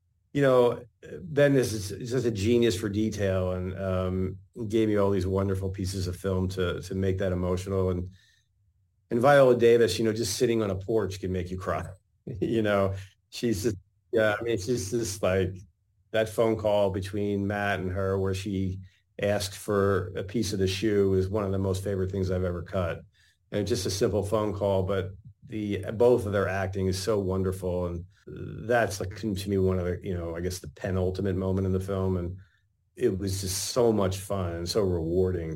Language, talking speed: English, 200 wpm